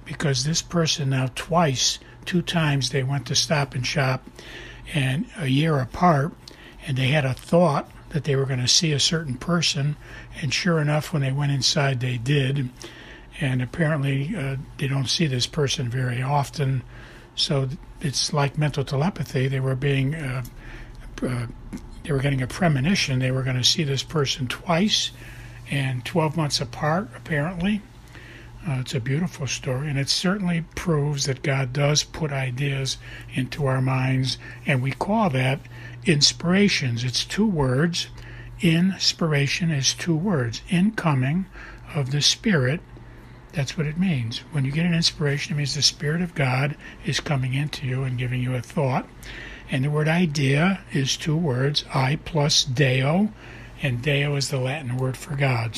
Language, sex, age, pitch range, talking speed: English, male, 60-79, 125-155 Hz, 160 wpm